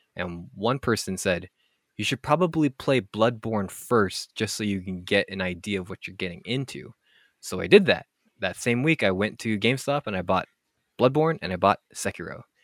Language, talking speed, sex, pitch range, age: English, 195 wpm, male, 90-115 Hz, 20-39